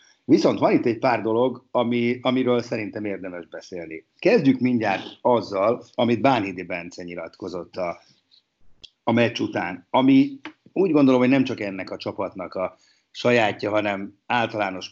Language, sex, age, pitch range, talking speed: Hungarian, male, 50-69, 100-135 Hz, 140 wpm